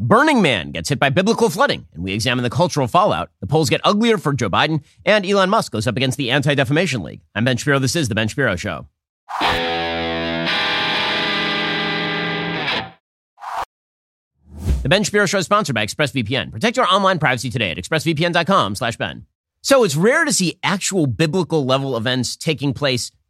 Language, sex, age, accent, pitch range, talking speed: English, male, 30-49, American, 130-180 Hz, 165 wpm